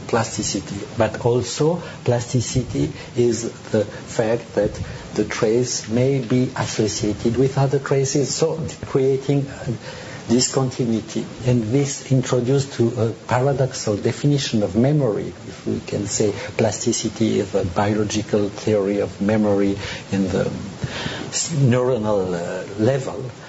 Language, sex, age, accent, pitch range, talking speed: English, male, 50-69, French, 110-140 Hz, 110 wpm